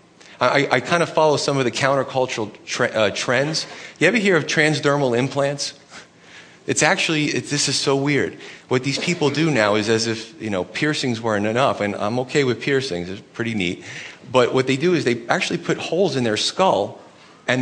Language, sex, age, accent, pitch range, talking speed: English, male, 30-49, American, 115-155 Hz, 190 wpm